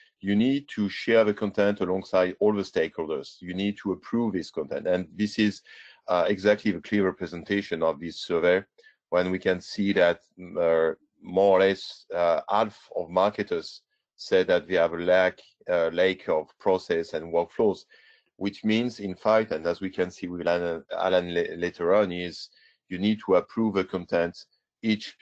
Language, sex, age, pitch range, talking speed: English, male, 40-59, 90-110 Hz, 175 wpm